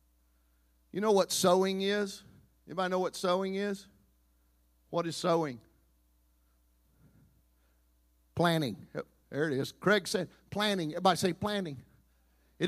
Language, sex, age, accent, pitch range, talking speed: English, male, 50-69, American, 135-210 Hz, 120 wpm